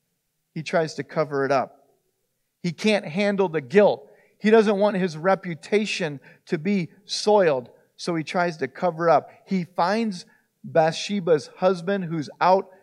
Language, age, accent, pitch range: English, 40-59, American, 135-185 Hz